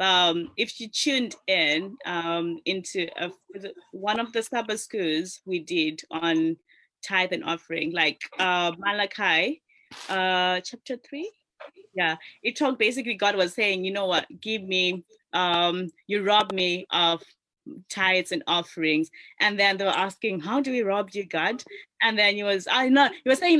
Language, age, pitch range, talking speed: English, 20-39, 180-235 Hz, 165 wpm